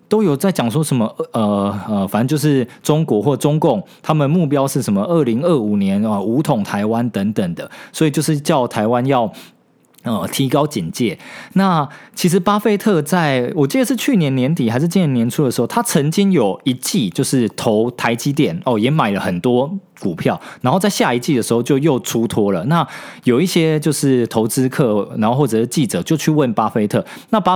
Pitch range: 120-180 Hz